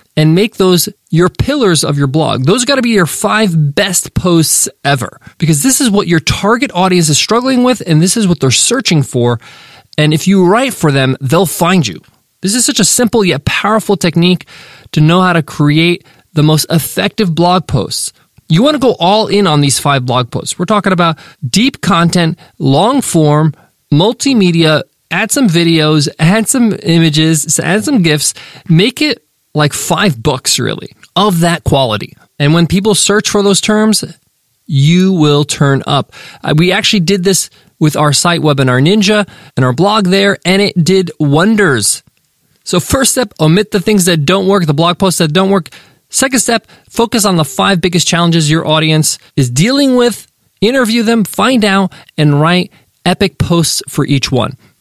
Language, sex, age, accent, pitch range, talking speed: English, male, 20-39, American, 150-205 Hz, 180 wpm